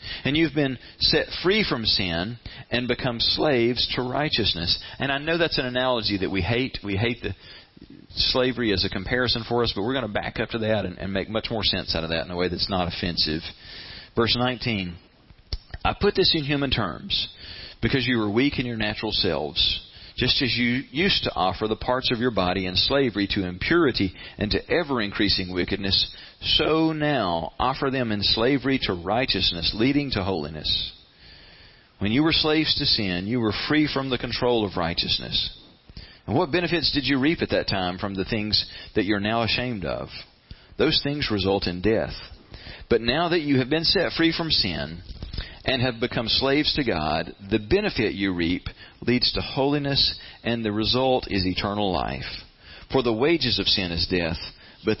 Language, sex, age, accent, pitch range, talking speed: English, male, 40-59, American, 95-130 Hz, 185 wpm